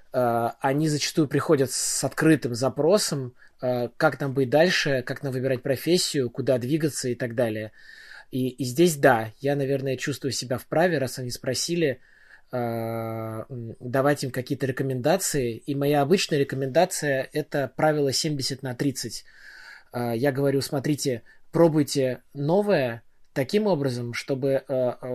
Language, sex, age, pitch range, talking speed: Russian, male, 20-39, 125-145 Hz, 125 wpm